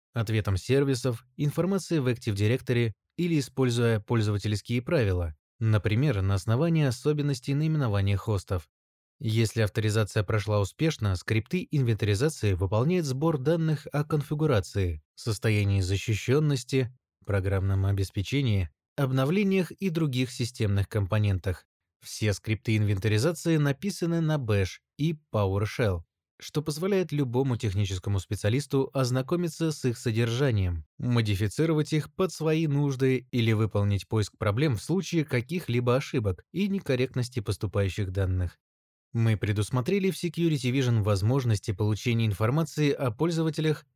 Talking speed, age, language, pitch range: 110 wpm, 20-39, Russian, 105-145 Hz